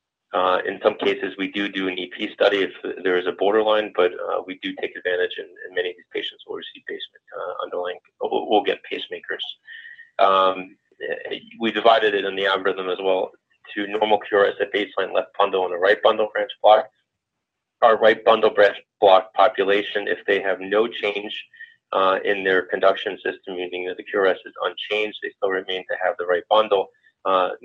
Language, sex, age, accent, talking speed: English, male, 30-49, American, 190 wpm